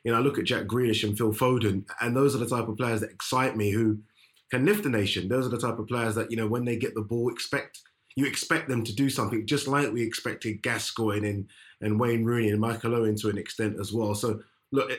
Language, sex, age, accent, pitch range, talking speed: English, male, 20-39, British, 110-135 Hz, 260 wpm